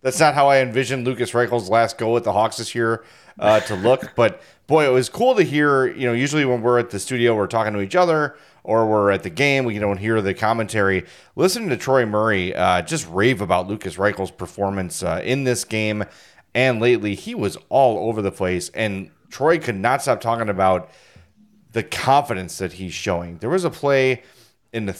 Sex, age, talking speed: male, 30-49, 210 wpm